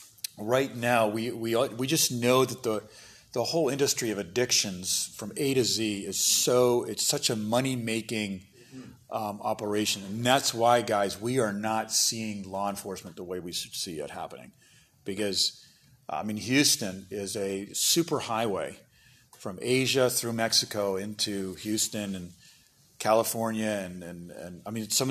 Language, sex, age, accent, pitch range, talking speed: English, male, 40-59, American, 100-125 Hz, 160 wpm